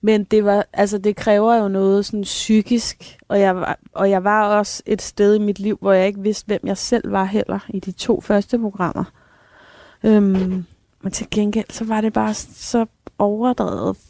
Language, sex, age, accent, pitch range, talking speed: Danish, female, 30-49, native, 190-230 Hz, 200 wpm